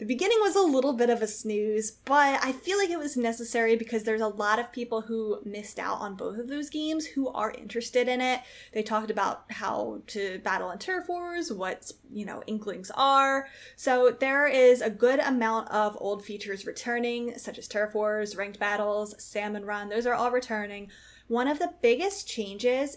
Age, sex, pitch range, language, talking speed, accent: 10-29, female, 210-255 Hz, English, 200 wpm, American